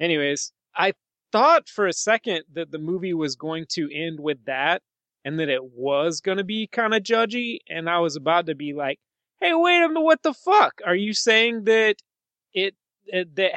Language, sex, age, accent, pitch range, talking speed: English, male, 30-49, American, 140-175 Hz, 205 wpm